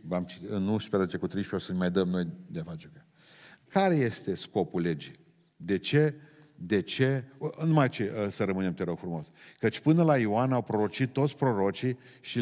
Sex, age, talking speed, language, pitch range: male, 40-59, 190 wpm, Romanian, 100-145 Hz